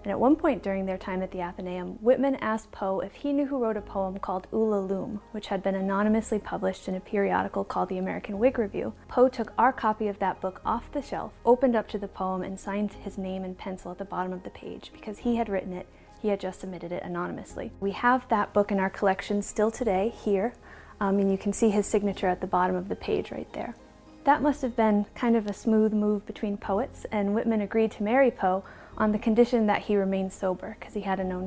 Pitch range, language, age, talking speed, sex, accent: 190-220 Hz, English, 30-49, 245 wpm, female, American